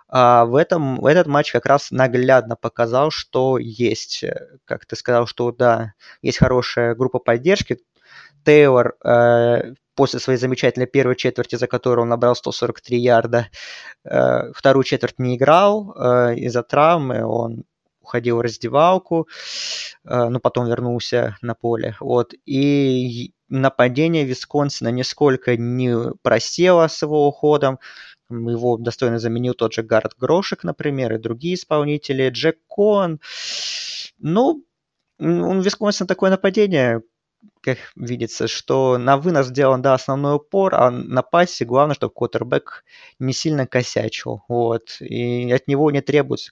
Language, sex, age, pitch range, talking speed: Russian, male, 20-39, 120-150 Hz, 130 wpm